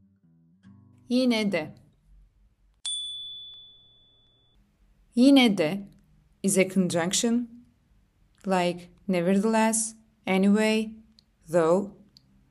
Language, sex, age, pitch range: Turkish, female, 20-39, 150-220 Hz